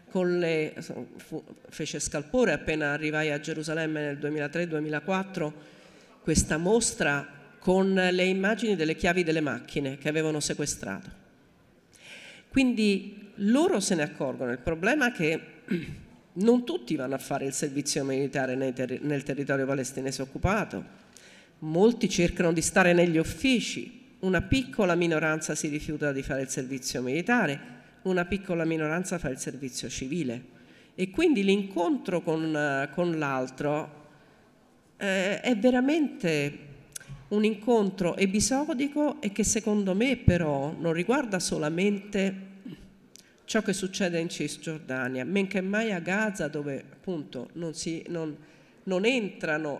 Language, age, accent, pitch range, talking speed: Italian, 50-69, native, 150-195 Hz, 125 wpm